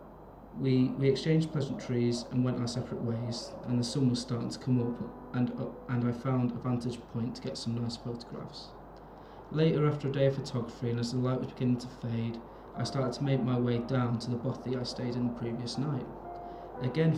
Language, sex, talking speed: English, male, 215 wpm